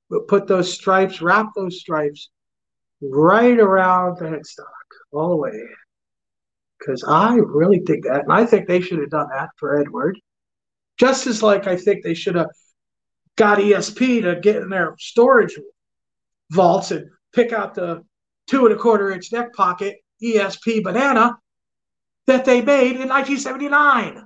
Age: 50-69